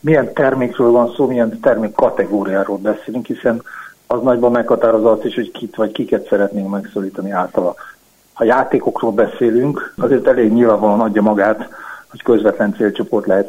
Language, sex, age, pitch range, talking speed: Hungarian, male, 50-69, 105-150 Hz, 140 wpm